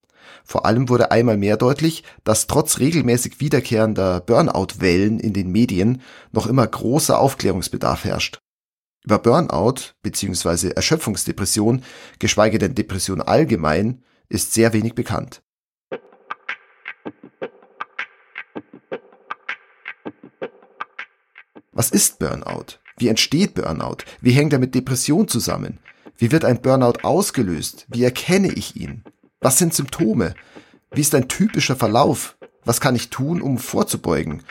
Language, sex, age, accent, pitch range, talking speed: German, male, 40-59, German, 110-140 Hz, 115 wpm